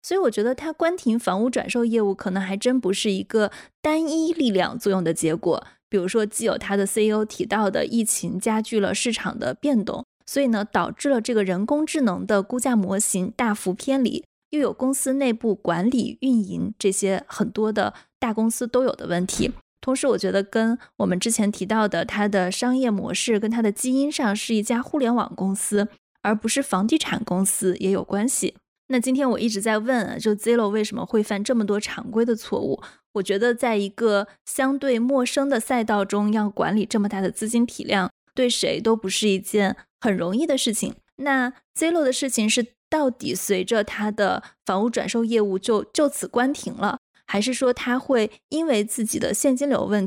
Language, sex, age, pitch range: Chinese, female, 20-39, 205-255 Hz